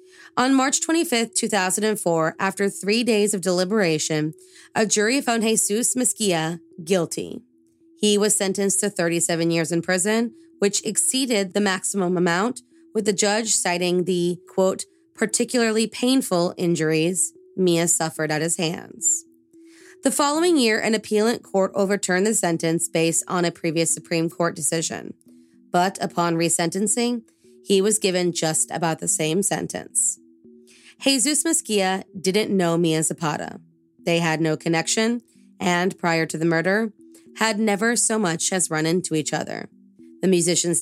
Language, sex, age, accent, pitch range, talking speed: English, female, 20-39, American, 165-215 Hz, 140 wpm